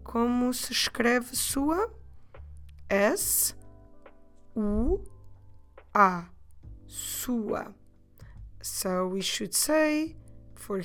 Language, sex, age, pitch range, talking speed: English, female, 20-39, 180-240 Hz, 70 wpm